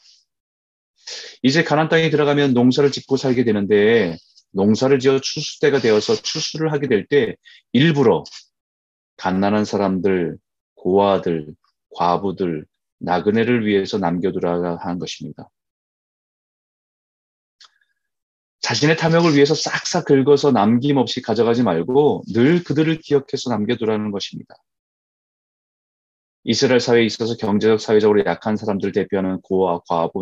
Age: 30-49